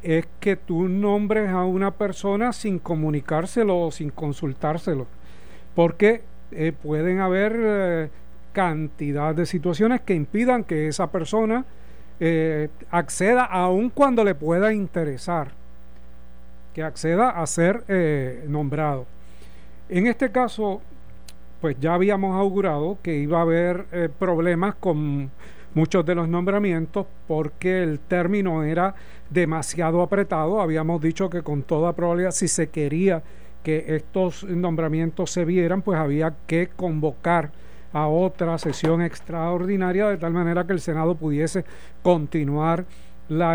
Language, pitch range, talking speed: Spanish, 155-190 Hz, 130 wpm